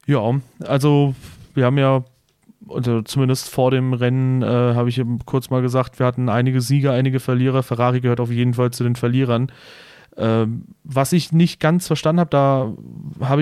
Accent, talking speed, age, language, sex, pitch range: German, 180 wpm, 30-49, German, male, 125-150 Hz